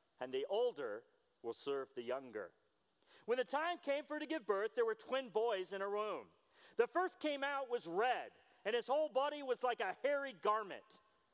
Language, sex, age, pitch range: English, male, 40-59, 210-325 Hz